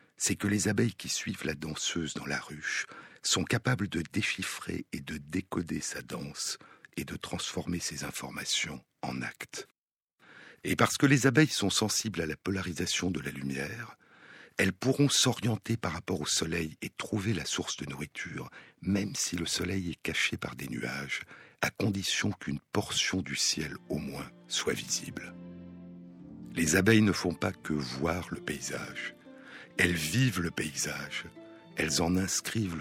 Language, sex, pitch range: French, male, 80-105 Hz